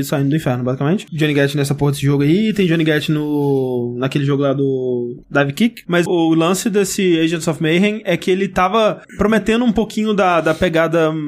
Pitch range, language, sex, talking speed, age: 150-190 Hz, Portuguese, male, 200 wpm, 20-39